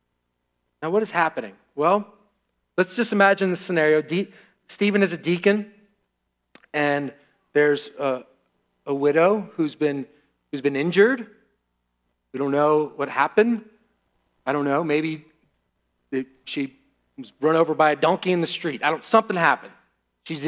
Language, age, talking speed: English, 40-59, 145 wpm